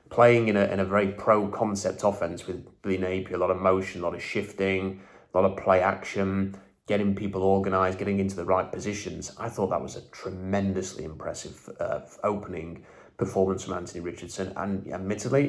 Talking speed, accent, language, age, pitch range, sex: 175 wpm, British, English, 30-49, 95-105 Hz, male